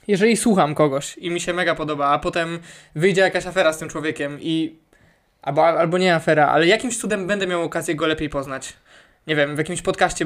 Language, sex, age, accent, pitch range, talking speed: Polish, male, 20-39, native, 160-195 Hz, 210 wpm